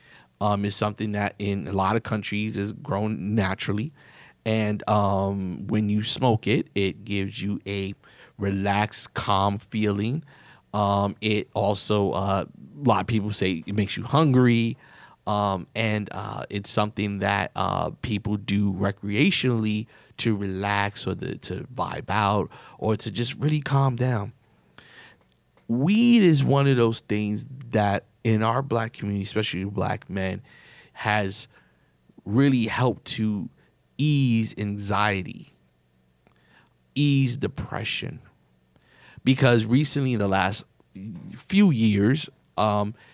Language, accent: English, American